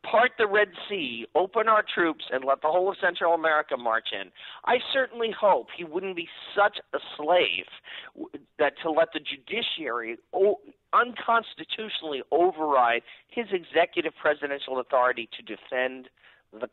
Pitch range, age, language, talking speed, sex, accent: 130-200 Hz, 50-69, English, 140 wpm, male, American